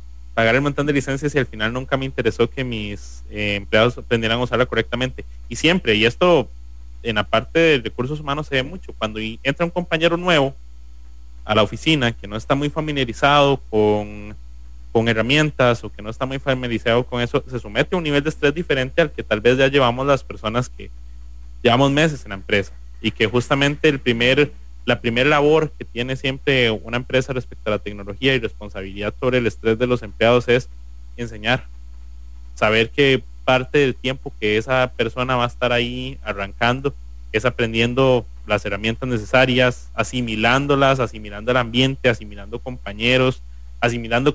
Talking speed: 175 wpm